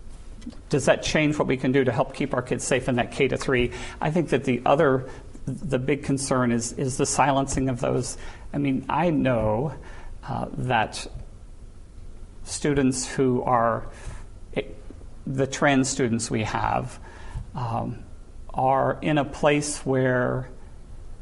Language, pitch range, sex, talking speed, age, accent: English, 115-145 Hz, male, 145 wpm, 50-69, American